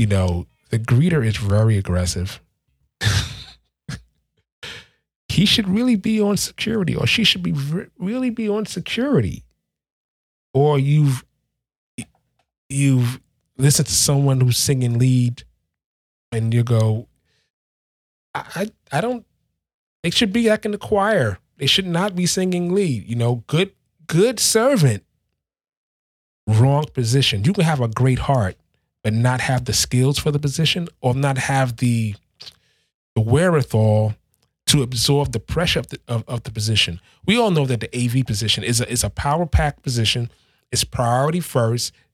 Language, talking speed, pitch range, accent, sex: English, 150 wpm, 115-155 Hz, American, male